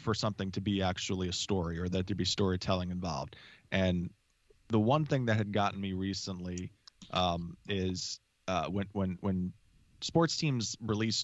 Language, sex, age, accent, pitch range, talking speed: English, male, 20-39, American, 95-110 Hz, 165 wpm